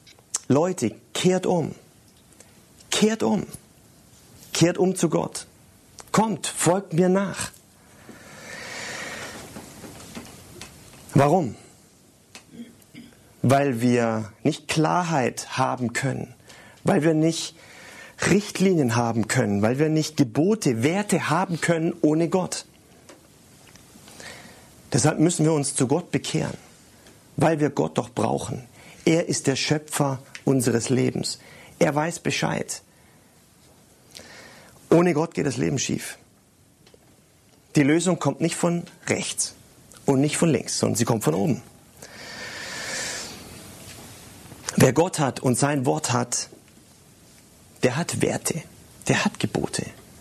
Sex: male